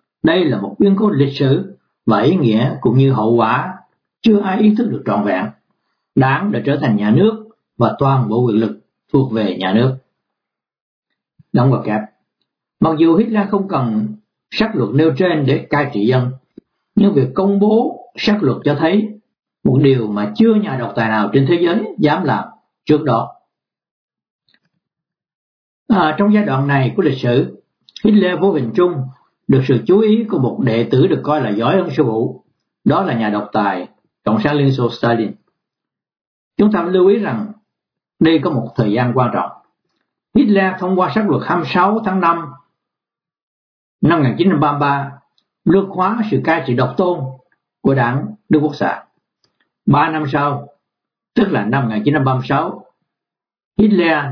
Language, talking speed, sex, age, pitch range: Vietnamese, 170 wpm, male, 60-79, 125-190 Hz